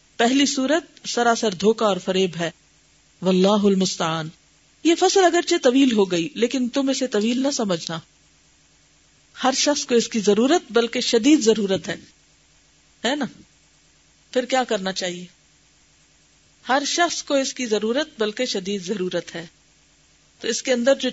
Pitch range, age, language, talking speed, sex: 195-265 Hz, 40-59, Urdu, 150 wpm, female